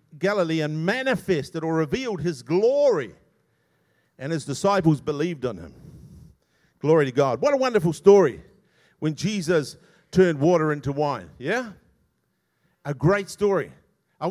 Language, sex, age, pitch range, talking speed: English, male, 50-69, 170-230 Hz, 130 wpm